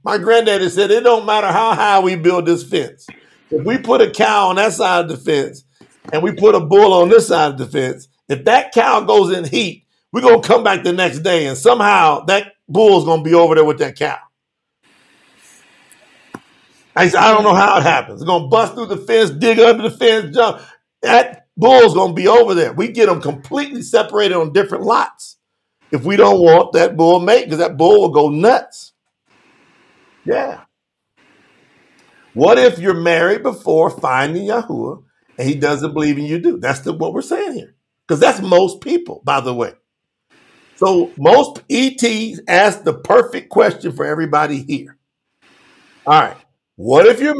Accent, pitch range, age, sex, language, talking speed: American, 165-230 Hz, 50-69, male, English, 190 wpm